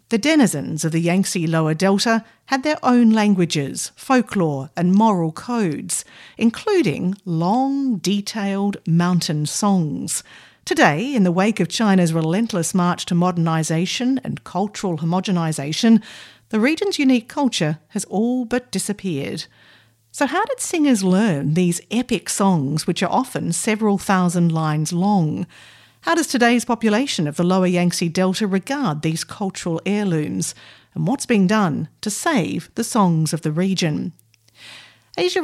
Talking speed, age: 135 wpm, 50-69